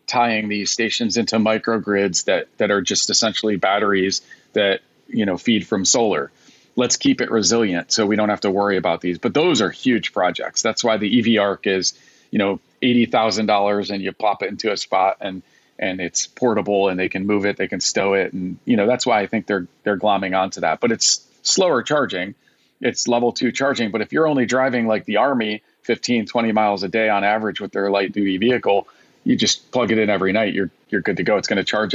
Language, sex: English, male